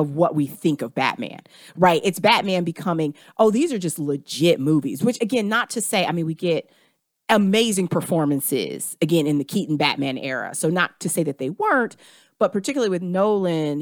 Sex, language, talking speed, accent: female, English, 190 wpm, American